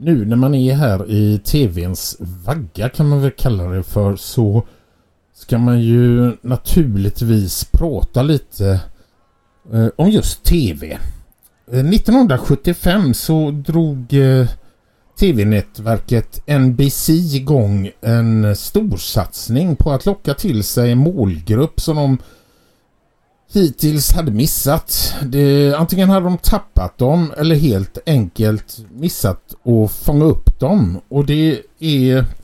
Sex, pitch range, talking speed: male, 105-150 Hz, 115 wpm